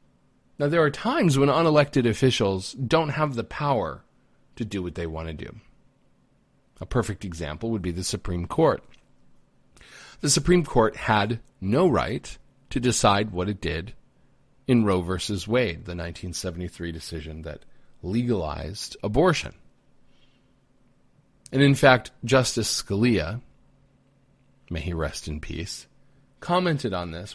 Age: 40-59